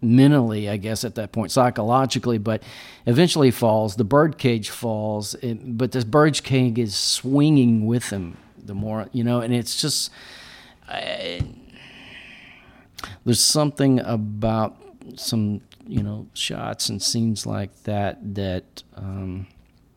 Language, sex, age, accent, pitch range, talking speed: English, male, 40-59, American, 95-120 Hz, 130 wpm